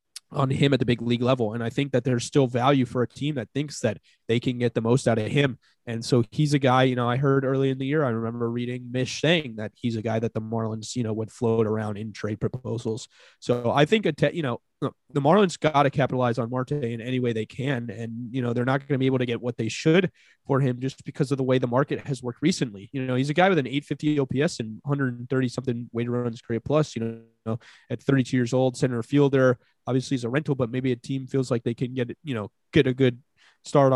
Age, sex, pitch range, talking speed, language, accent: 20-39, male, 115-135 Hz, 265 wpm, English, American